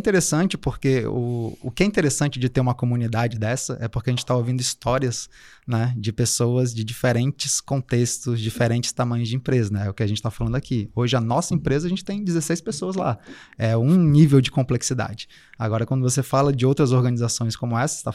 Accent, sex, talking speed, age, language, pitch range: Brazilian, male, 210 wpm, 20-39, Portuguese, 120-145 Hz